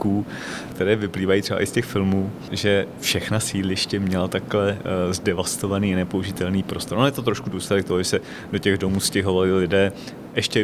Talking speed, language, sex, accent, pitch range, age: 170 wpm, Czech, male, native, 100-115 Hz, 30-49